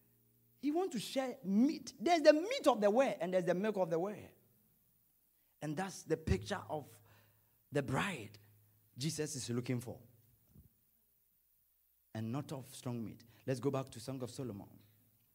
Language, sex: English, male